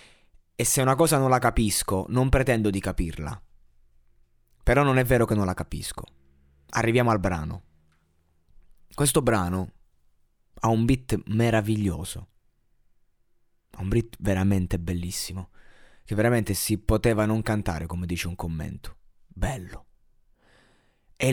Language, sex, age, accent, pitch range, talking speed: Italian, male, 30-49, native, 90-125 Hz, 125 wpm